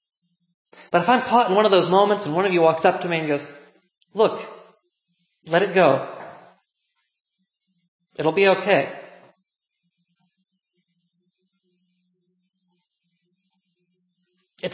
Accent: American